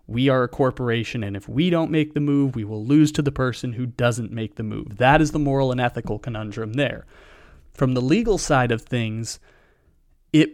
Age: 30-49